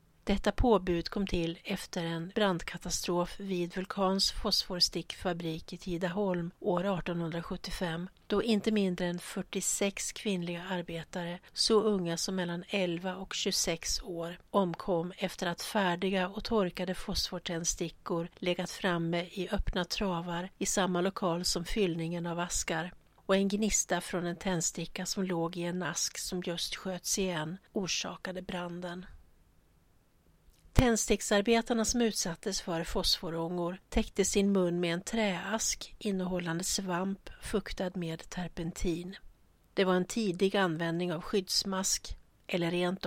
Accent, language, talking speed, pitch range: native, Swedish, 125 wpm, 175-195 Hz